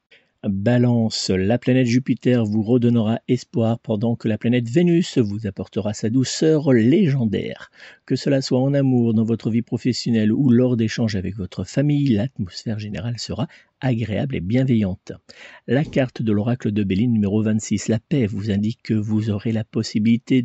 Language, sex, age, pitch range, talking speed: French, male, 50-69, 105-130 Hz, 160 wpm